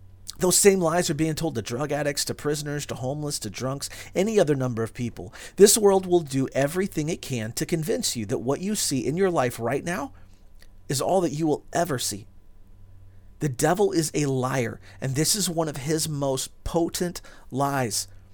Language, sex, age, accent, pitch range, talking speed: English, male, 40-59, American, 110-170 Hz, 195 wpm